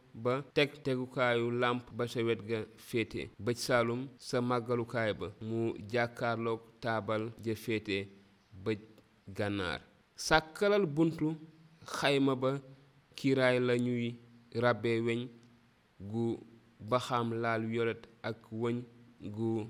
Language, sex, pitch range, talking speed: French, male, 115-130 Hz, 120 wpm